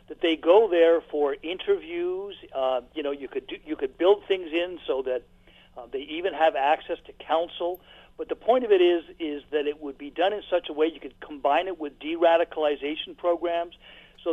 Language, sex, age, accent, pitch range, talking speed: English, male, 50-69, American, 145-205 Hz, 210 wpm